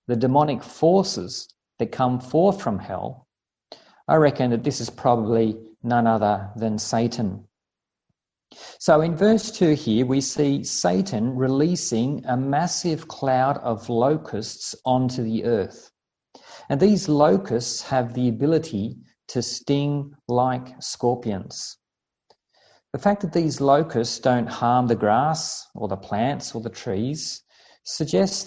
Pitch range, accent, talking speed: 115-150 Hz, Australian, 130 wpm